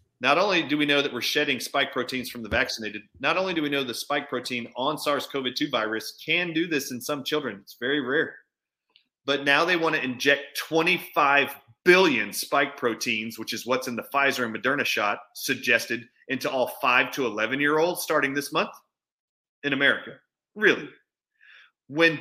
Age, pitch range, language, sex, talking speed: 30-49, 120-150 Hz, English, male, 175 wpm